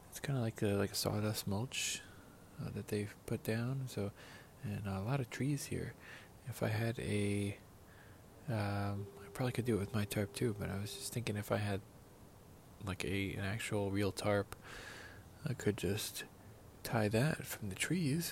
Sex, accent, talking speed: male, American, 185 wpm